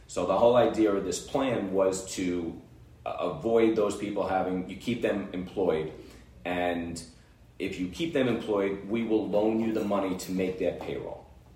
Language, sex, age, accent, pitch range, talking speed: English, male, 30-49, American, 90-105 Hz, 170 wpm